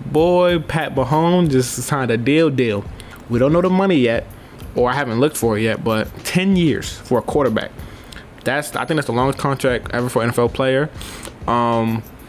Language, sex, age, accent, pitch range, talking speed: English, male, 20-39, American, 115-135 Hz, 195 wpm